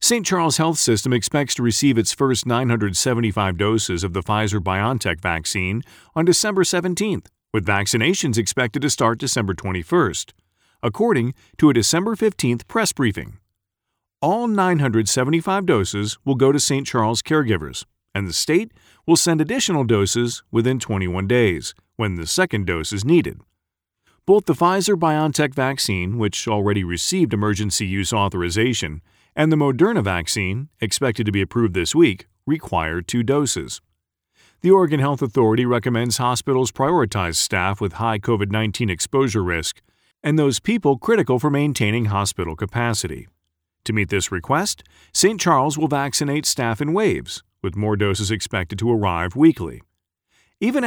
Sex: male